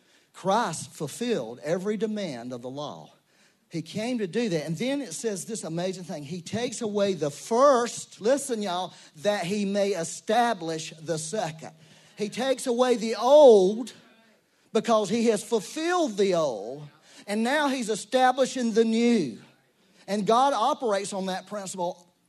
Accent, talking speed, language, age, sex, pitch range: American, 150 wpm, English, 40-59, male, 180-235 Hz